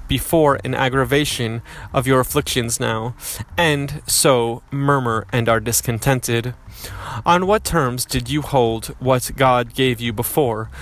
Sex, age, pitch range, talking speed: male, 30-49, 115-140 Hz, 135 wpm